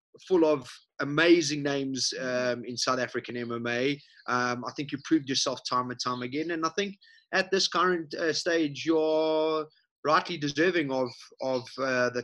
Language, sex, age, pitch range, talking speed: English, male, 20-39, 125-155 Hz, 165 wpm